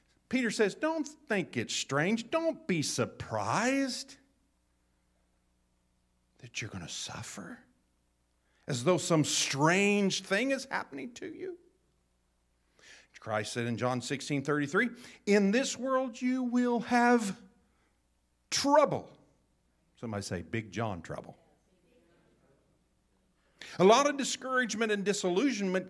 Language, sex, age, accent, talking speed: English, male, 50-69, American, 105 wpm